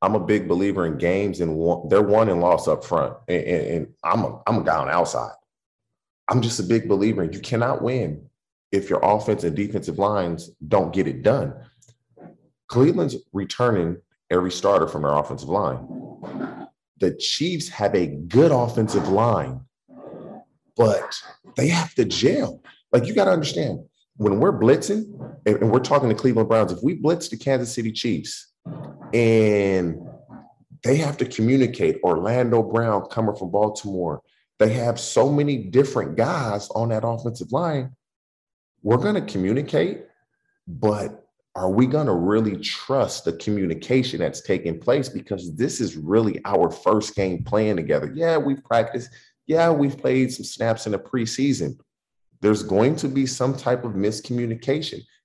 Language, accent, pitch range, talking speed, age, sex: English, American, 100-130 Hz, 155 wpm, 40-59, male